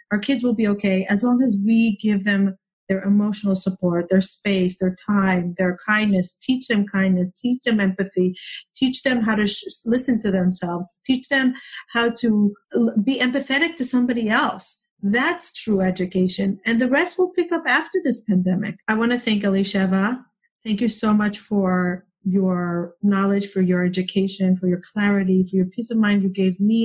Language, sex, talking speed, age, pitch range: English, female, 180 wpm, 40-59, 185-220 Hz